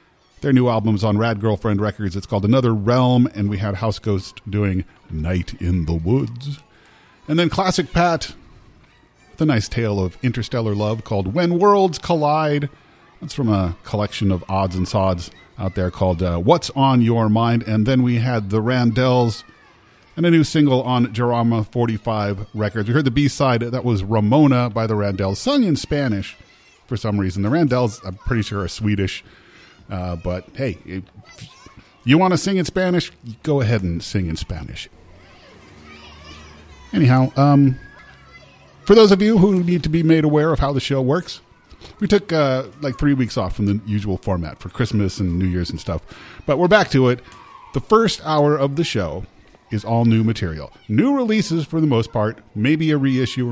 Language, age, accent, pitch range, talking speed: English, 40-59, American, 95-140 Hz, 185 wpm